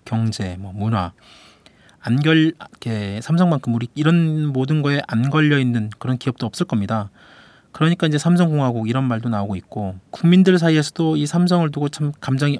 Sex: male